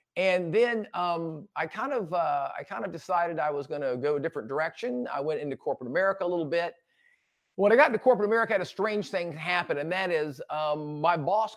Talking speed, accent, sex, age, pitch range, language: 235 wpm, American, male, 50-69, 145-180 Hz, English